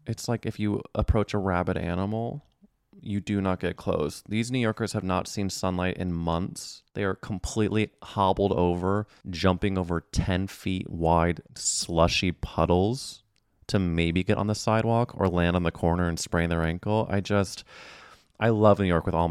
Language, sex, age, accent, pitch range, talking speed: English, male, 20-39, American, 90-120 Hz, 175 wpm